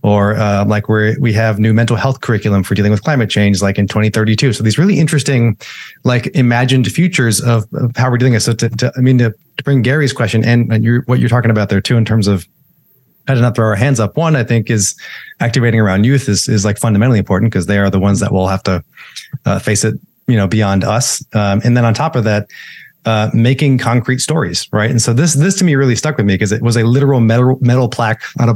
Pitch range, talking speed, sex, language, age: 105-125 Hz, 255 wpm, male, English, 30-49